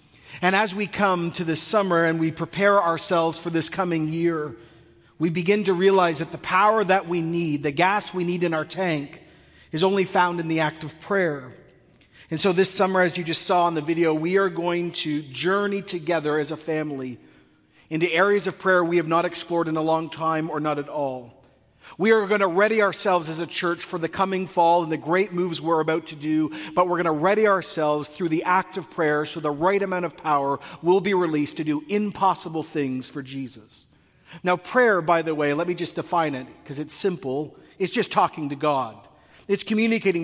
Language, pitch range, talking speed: English, 160-195 Hz, 215 wpm